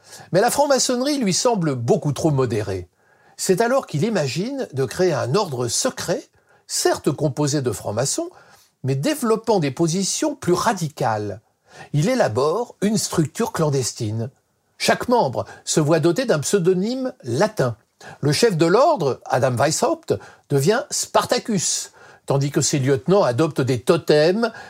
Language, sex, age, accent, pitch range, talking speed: French, male, 50-69, French, 140-210 Hz, 135 wpm